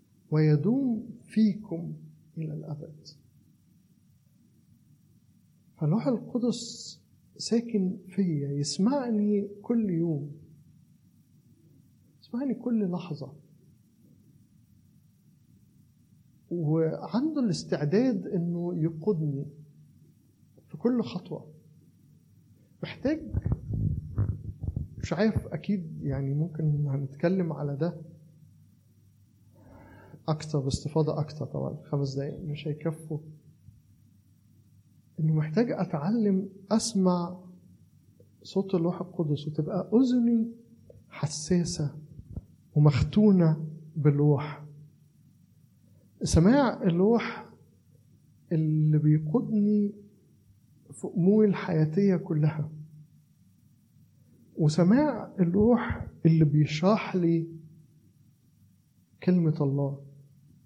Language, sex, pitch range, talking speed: Arabic, male, 145-190 Hz, 65 wpm